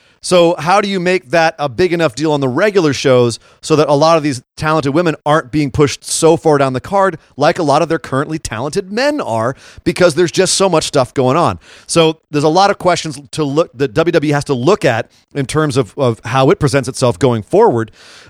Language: English